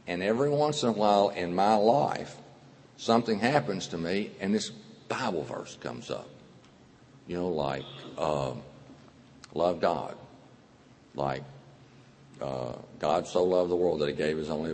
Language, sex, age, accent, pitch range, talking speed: English, male, 50-69, American, 80-120 Hz, 150 wpm